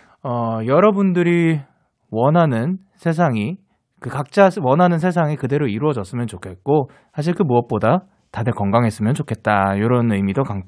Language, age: Korean, 20-39